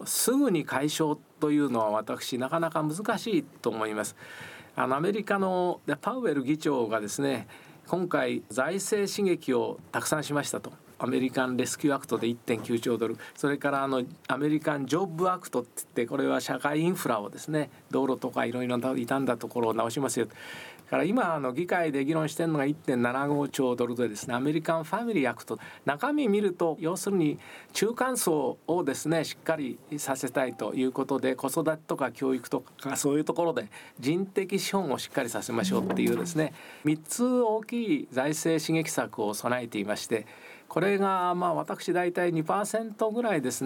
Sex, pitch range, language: male, 130-175 Hz, Japanese